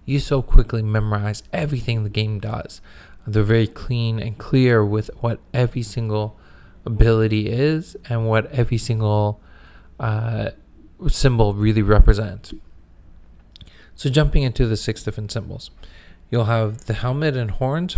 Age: 20-39